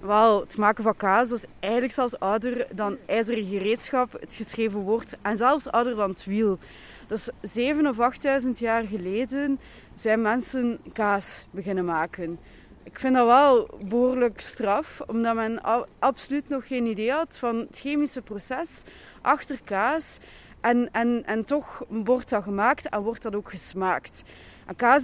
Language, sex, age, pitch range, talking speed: Dutch, female, 20-39, 210-260 Hz, 155 wpm